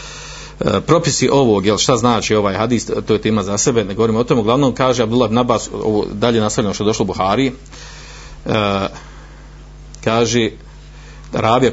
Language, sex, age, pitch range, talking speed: Croatian, male, 50-69, 110-135 Hz, 170 wpm